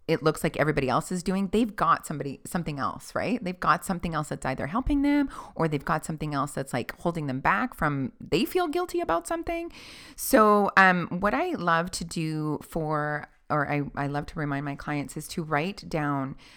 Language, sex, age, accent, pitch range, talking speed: English, female, 30-49, American, 140-185 Hz, 205 wpm